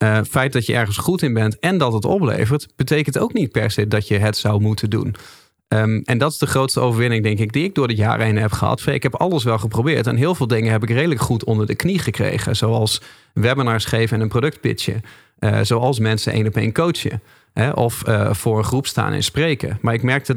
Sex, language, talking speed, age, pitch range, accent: male, Dutch, 245 wpm, 40-59, 110-140 Hz, Dutch